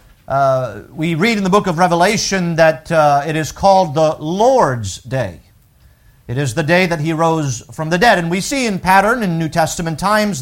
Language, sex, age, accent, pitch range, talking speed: English, male, 50-69, American, 155-210 Hz, 200 wpm